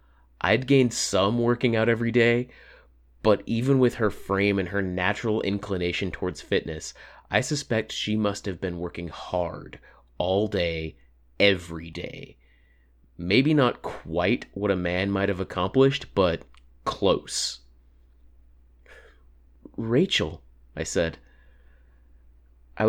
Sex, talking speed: male, 120 wpm